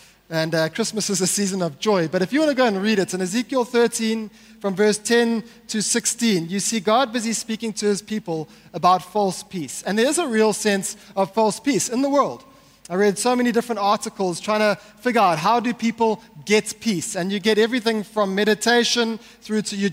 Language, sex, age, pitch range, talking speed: English, male, 20-39, 190-225 Hz, 215 wpm